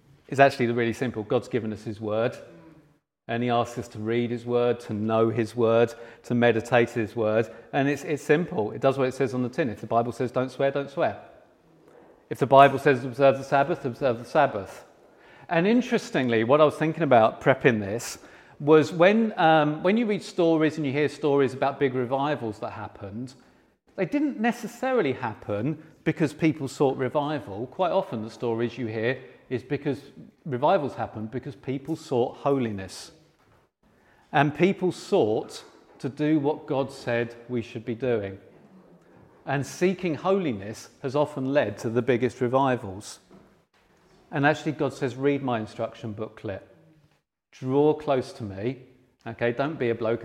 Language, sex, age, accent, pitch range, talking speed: English, male, 40-59, British, 115-145 Hz, 170 wpm